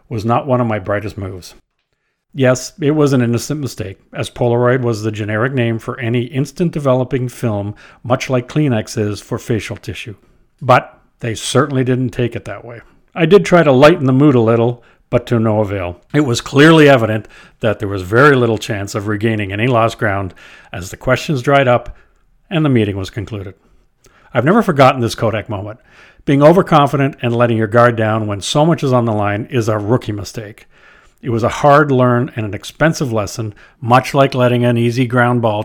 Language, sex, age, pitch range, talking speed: English, male, 50-69, 110-135 Hz, 195 wpm